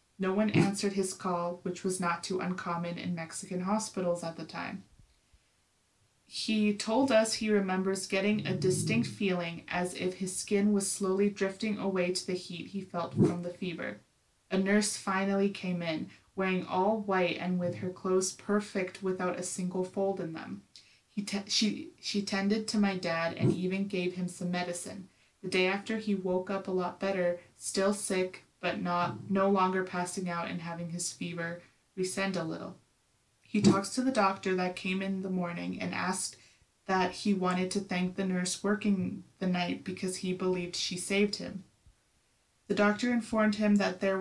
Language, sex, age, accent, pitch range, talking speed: English, female, 20-39, American, 180-200 Hz, 175 wpm